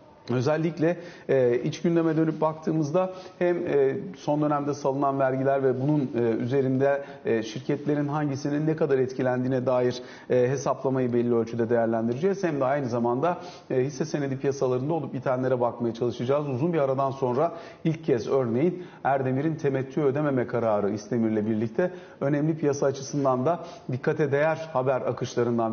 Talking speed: 140 wpm